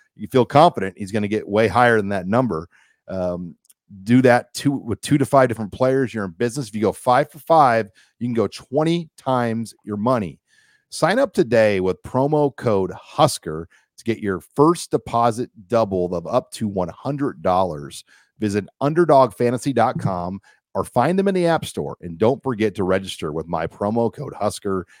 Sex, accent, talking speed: male, American, 175 wpm